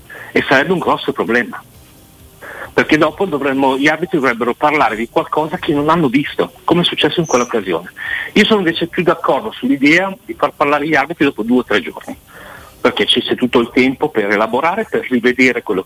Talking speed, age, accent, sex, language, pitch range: 190 wpm, 50-69, native, male, Italian, 125-175 Hz